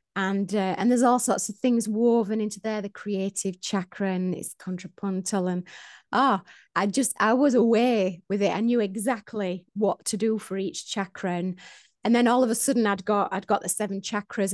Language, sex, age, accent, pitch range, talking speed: English, female, 30-49, British, 185-220 Hz, 200 wpm